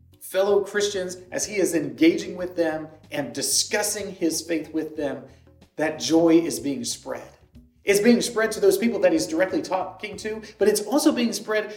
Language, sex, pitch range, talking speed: English, male, 155-225 Hz, 180 wpm